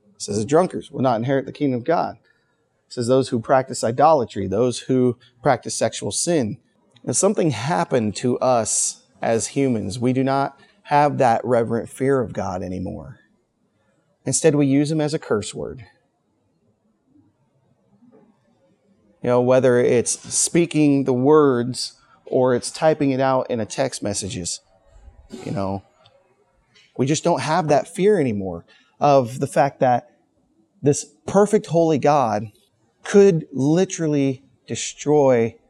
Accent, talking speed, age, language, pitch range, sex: American, 140 wpm, 30-49, English, 120-160 Hz, male